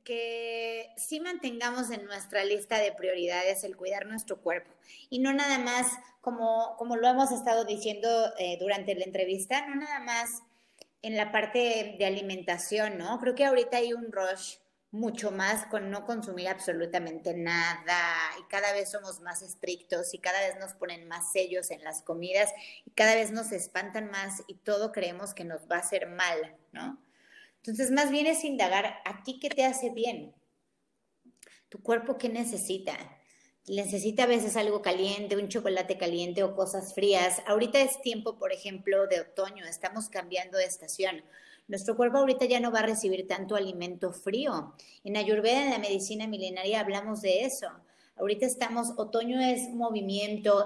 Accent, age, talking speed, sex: Mexican, 30-49, 170 wpm, female